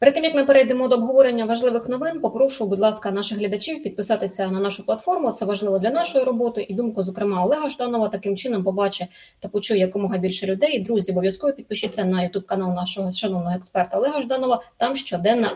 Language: Russian